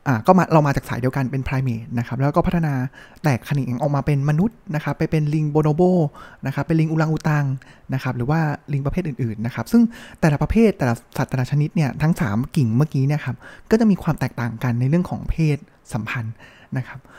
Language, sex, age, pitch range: Thai, male, 20-39, 130-170 Hz